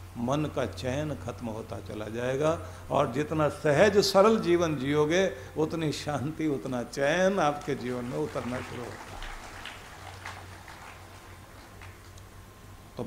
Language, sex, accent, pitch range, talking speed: Hindi, male, native, 95-140 Hz, 110 wpm